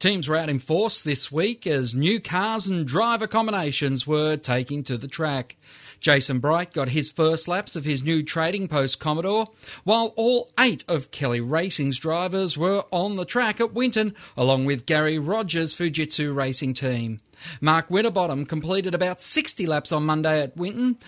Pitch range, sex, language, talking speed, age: 140-195 Hz, male, English, 170 wpm, 40-59